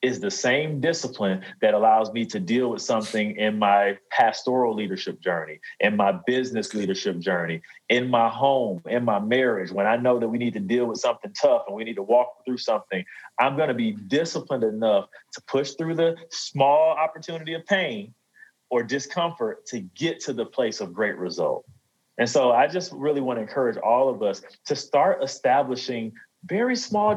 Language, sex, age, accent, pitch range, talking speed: English, male, 30-49, American, 110-155 Hz, 190 wpm